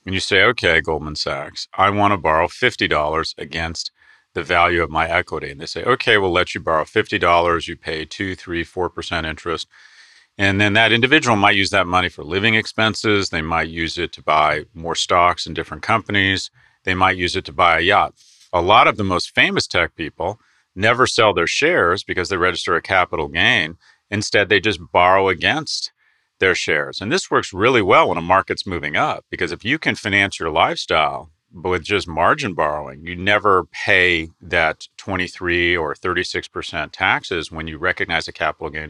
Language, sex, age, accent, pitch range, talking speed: English, male, 40-59, American, 85-100 Hz, 190 wpm